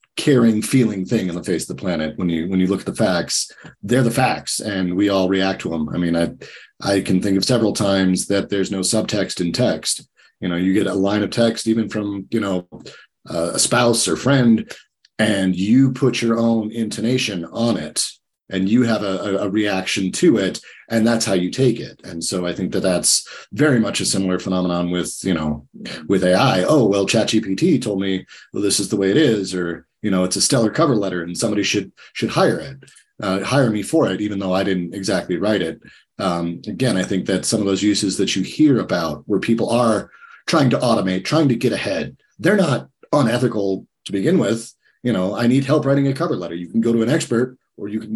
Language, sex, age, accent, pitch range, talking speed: English, male, 40-59, American, 95-115 Hz, 225 wpm